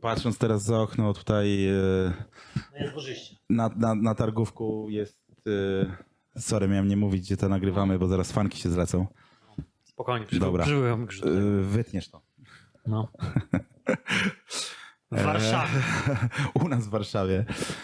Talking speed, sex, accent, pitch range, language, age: 100 wpm, male, native, 95-110 Hz, Polish, 20-39